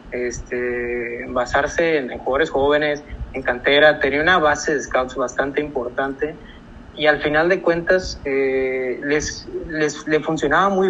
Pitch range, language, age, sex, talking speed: 140-185 Hz, Spanish, 30-49, male, 145 wpm